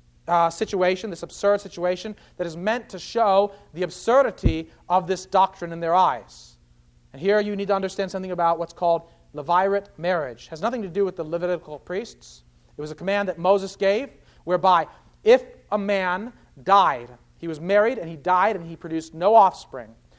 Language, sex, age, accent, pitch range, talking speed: English, male, 40-59, American, 165-205 Hz, 185 wpm